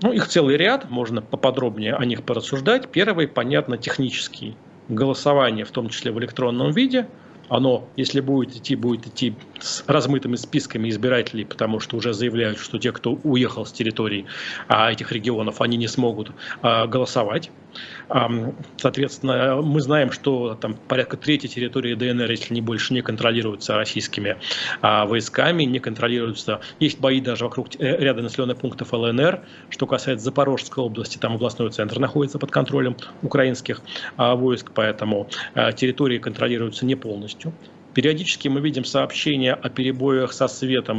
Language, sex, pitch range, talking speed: Russian, male, 115-135 Hz, 140 wpm